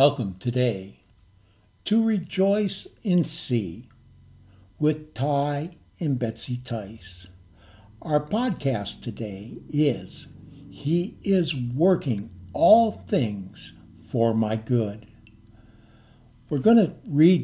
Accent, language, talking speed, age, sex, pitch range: American, English, 95 wpm, 60-79, male, 120-170 Hz